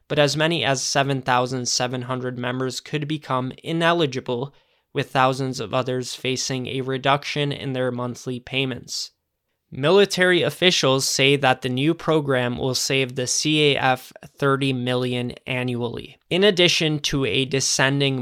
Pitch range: 125-150 Hz